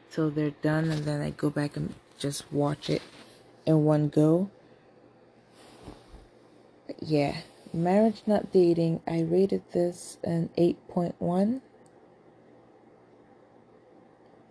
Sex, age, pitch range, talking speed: female, 20-39, 150-185 Hz, 100 wpm